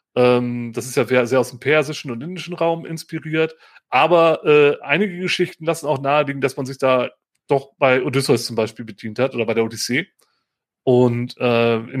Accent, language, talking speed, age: German, German, 180 wpm, 30-49